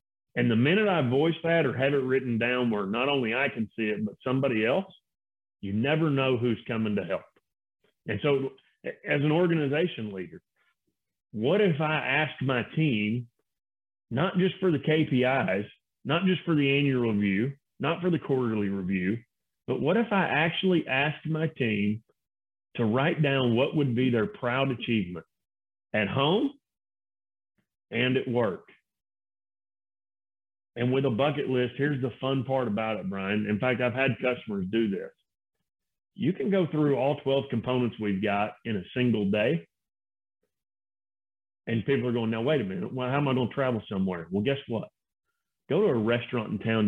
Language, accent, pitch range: English, American, 110-155 Hz